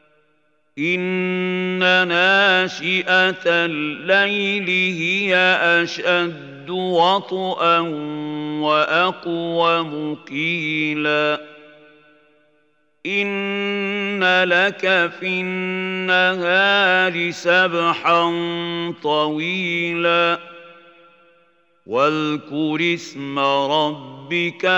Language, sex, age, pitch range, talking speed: Arabic, male, 50-69, 150-185 Hz, 40 wpm